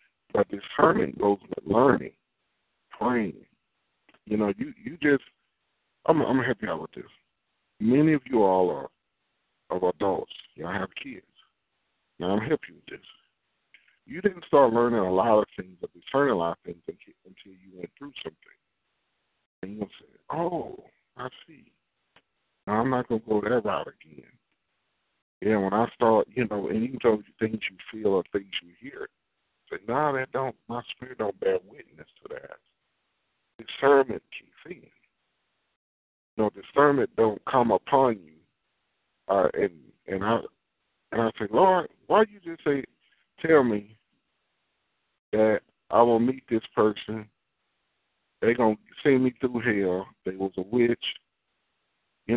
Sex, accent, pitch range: male, American, 105-150 Hz